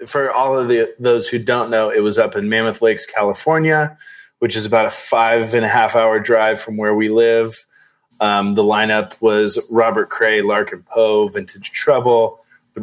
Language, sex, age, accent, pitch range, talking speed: English, male, 20-39, American, 105-130 Hz, 185 wpm